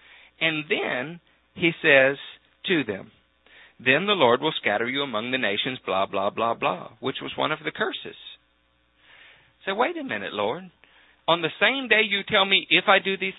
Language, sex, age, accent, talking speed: English, male, 50-69, American, 185 wpm